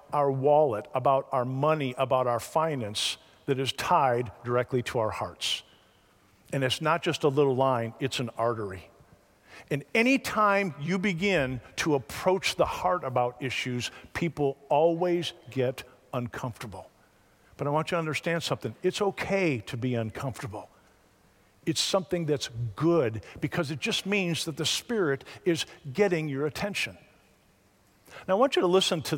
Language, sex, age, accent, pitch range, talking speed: English, male, 50-69, American, 120-175 Hz, 150 wpm